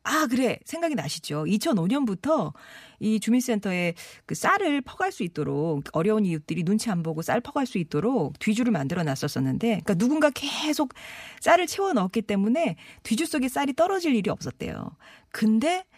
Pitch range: 155-235 Hz